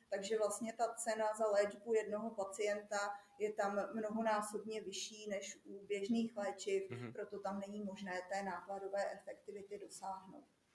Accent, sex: native, female